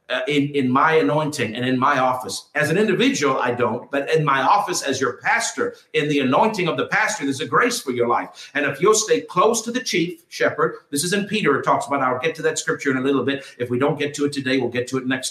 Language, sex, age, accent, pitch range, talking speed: English, male, 50-69, American, 140-185 Hz, 275 wpm